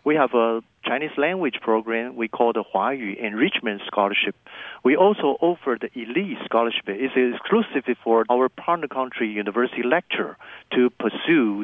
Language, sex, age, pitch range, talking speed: English, male, 50-69, 115-140 Hz, 150 wpm